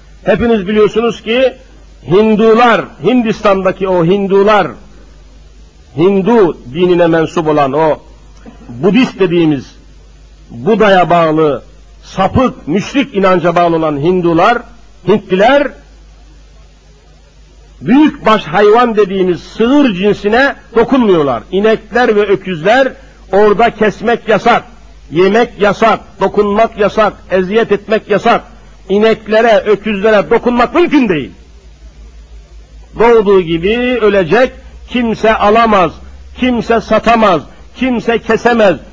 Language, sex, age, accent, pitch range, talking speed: Turkish, male, 60-79, native, 175-235 Hz, 90 wpm